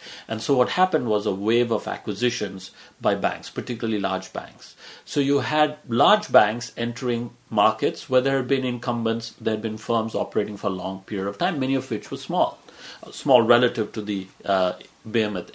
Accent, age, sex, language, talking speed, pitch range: Indian, 50-69, male, English, 185 wpm, 110-135 Hz